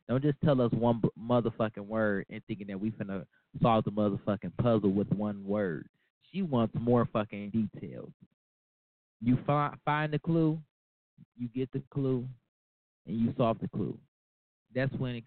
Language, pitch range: English, 105-125 Hz